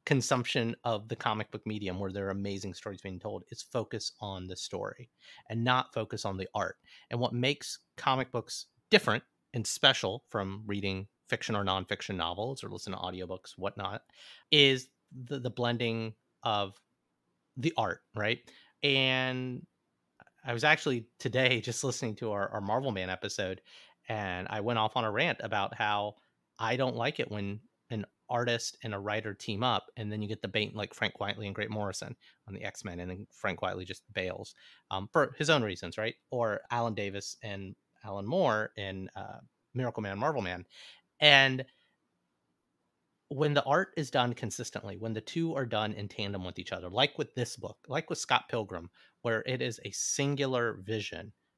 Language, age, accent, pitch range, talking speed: English, 30-49, American, 100-125 Hz, 180 wpm